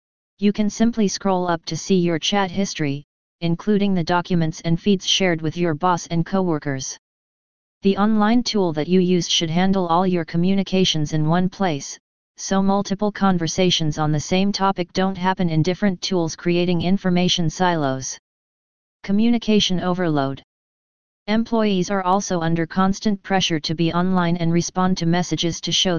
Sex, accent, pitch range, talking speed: female, American, 165-190 Hz, 155 wpm